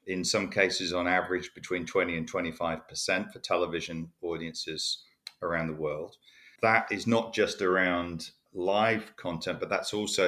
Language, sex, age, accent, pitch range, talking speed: English, male, 40-59, British, 85-100 Hz, 145 wpm